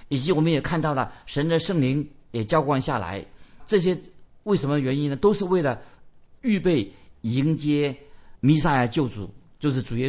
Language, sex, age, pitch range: Chinese, male, 50-69, 115-155 Hz